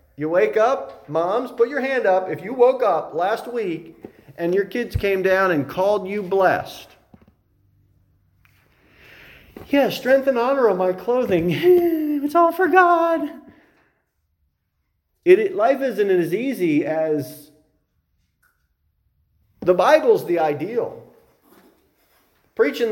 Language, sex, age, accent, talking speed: English, male, 40-59, American, 115 wpm